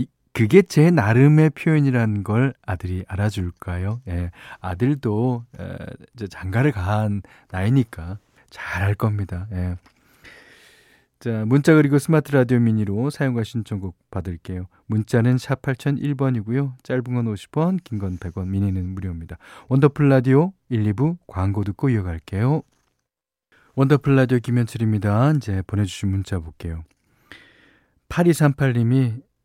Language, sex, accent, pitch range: Korean, male, native, 100-135 Hz